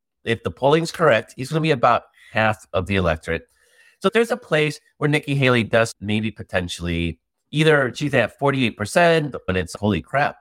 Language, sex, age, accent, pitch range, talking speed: English, male, 30-49, American, 85-120 Hz, 190 wpm